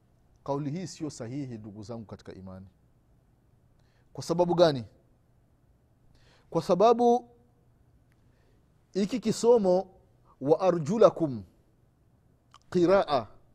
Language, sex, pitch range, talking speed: Swahili, male, 125-195 Hz, 80 wpm